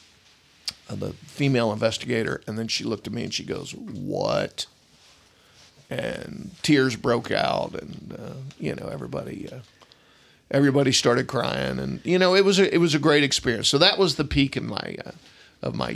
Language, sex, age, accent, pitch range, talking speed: English, male, 50-69, American, 130-150 Hz, 175 wpm